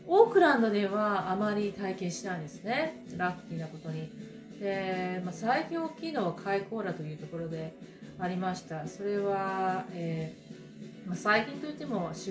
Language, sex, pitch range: Japanese, female, 175-225 Hz